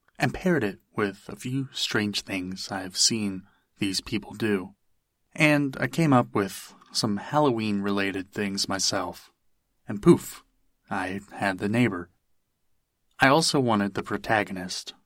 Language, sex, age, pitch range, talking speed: English, male, 30-49, 95-105 Hz, 130 wpm